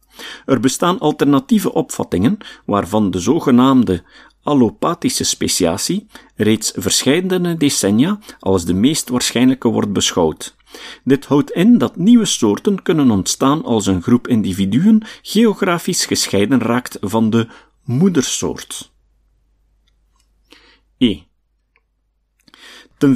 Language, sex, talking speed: Dutch, male, 95 wpm